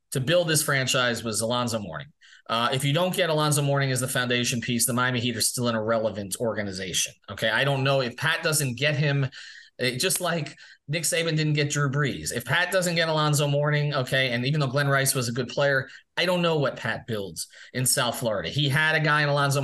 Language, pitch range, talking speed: English, 125-160 Hz, 230 wpm